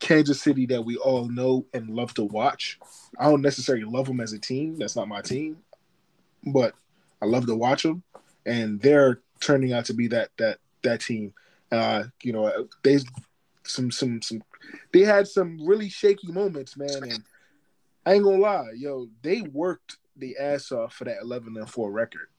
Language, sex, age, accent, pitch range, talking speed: English, male, 20-39, American, 115-145 Hz, 185 wpm